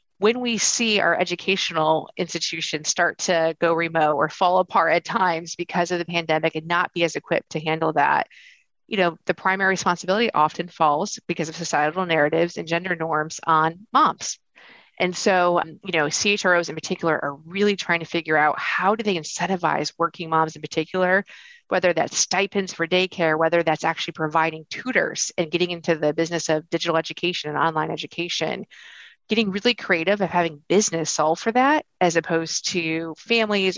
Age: 30-49